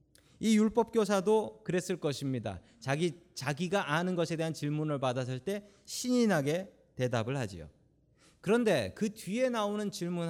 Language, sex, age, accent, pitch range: Korean, male, 40-59, native, 125-200 Hz